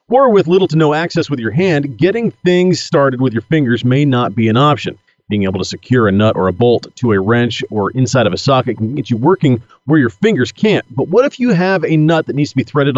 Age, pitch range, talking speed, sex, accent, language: 40-59, 125-185 Hz, 265 wpm, male, American, English